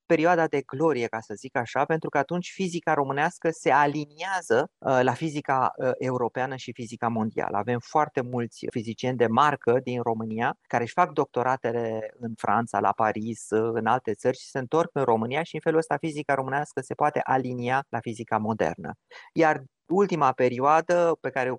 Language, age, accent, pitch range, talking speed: Romanian, 30-49, native, 120-160 Hz, 170 wpm